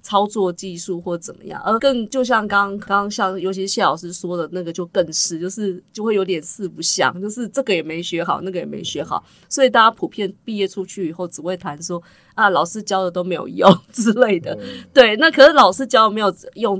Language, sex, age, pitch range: Chinese, female, 20-39, 180-230 Hz